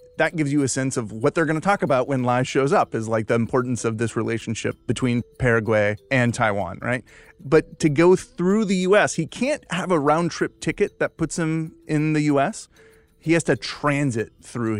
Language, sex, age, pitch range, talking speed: English, male, 30-49, 115-145 Hz, 210 wpm